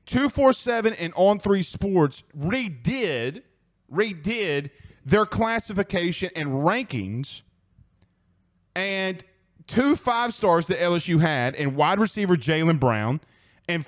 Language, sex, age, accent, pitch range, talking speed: English, male, 30-49, American, 120-190 Hz, 90 wpm